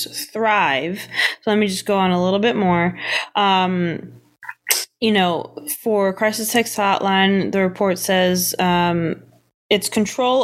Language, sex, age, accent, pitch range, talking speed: English, female, 20-39, American, 170-210 Hz, 140 wpm